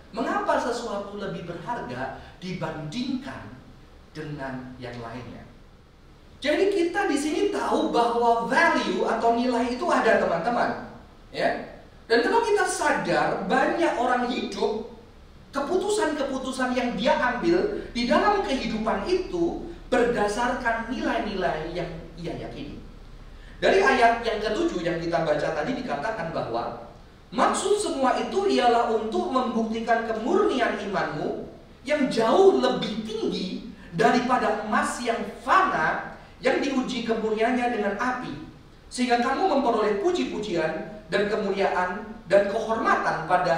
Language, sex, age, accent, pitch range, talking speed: Indonesian, male, 40-59, native, 200-300 Hz, 110 wpm